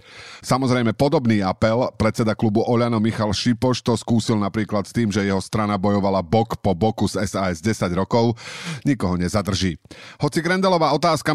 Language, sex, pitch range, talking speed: Czech, male, 110-140 Hz, 155 wpm